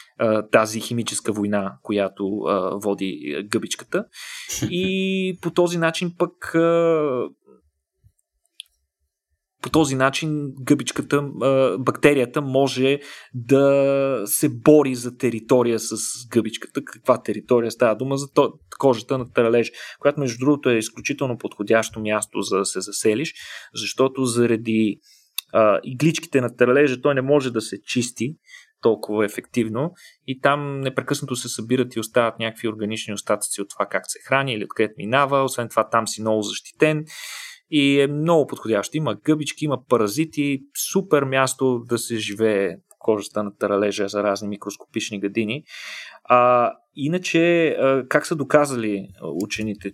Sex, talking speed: male, 135 wpm